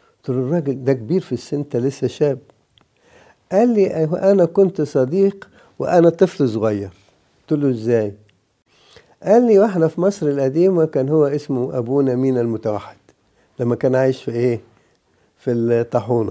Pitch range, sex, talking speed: 120-165 Hz, male, 135 wpm